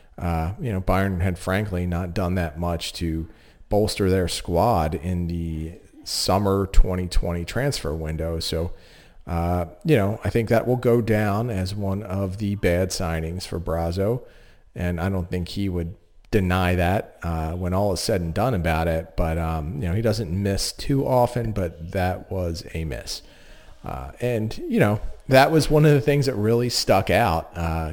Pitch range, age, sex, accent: 85-105 Hz, 40-59, male, American